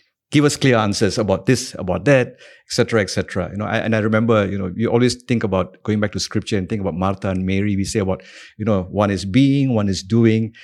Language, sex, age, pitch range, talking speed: English, male, 50-69, 100-125 Hz, 245 wpm